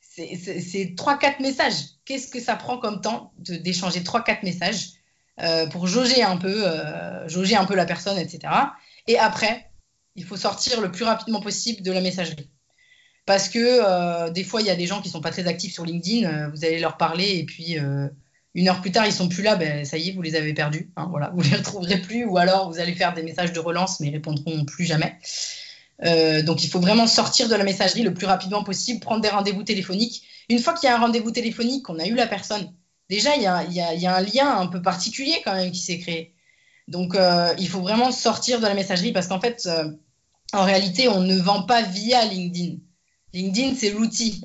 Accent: French